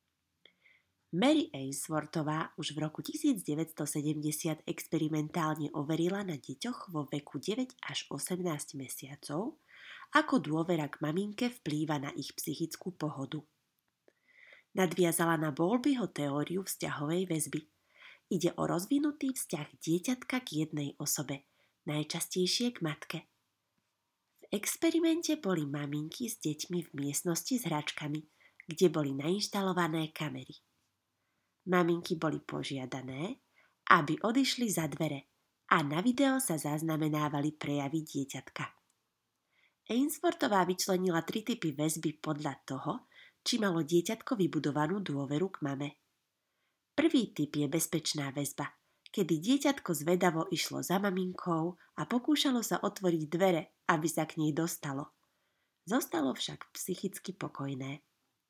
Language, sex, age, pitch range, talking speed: Slovak, female, 20-39, 150-200 Hz, 110 wpm